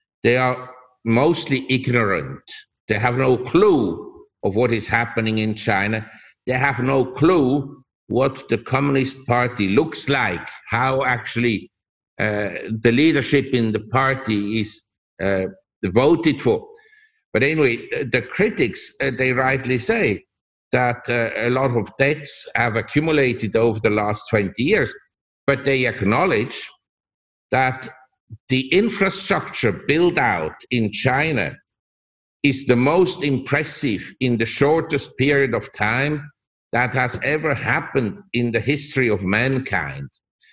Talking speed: 125 wpm